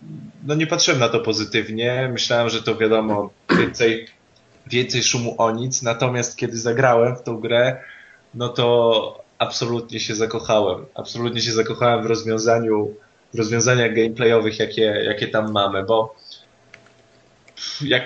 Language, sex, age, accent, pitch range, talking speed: Polish, male, 20-39, native, 110-125 Hz, 135 wpm